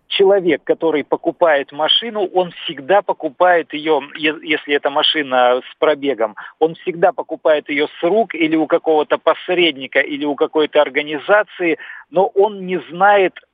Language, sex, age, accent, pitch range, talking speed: Russian, male, 50-69, native, 145-180 Hz, 135 wpm